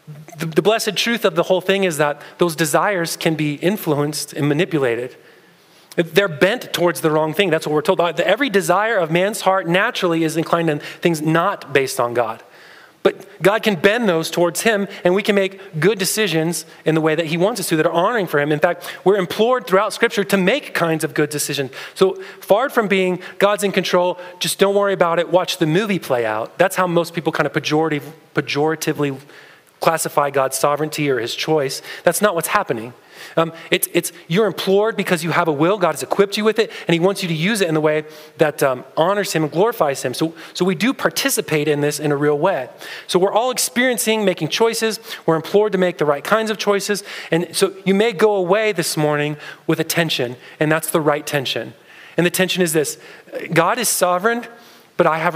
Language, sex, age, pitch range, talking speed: English, male, 30-49, 155-195 Hz, 220 wpm